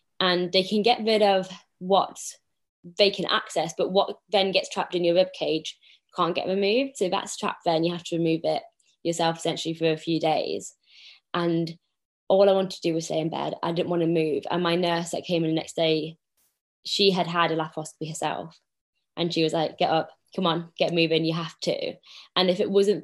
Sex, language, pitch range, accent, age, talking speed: female, English, 165-190 Hz, British, 20-39, 220 wpm